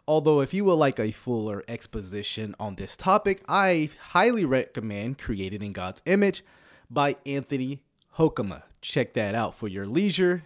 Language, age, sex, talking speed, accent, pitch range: English, 30-49, male, 155 wpm, American, 110-155 Hz